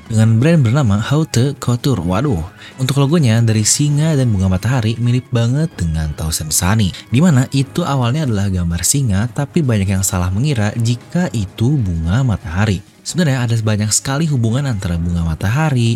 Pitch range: 95-135 Hz